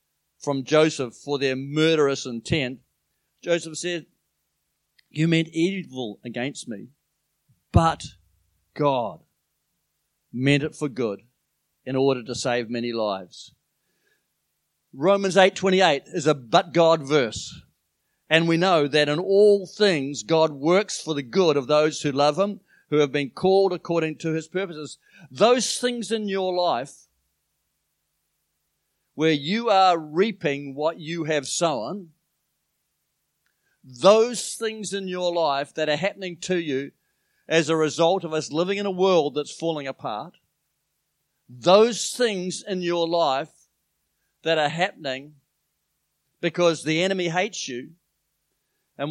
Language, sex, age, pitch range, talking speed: English, male, 50-69, 135-180 Hz, 130 wpm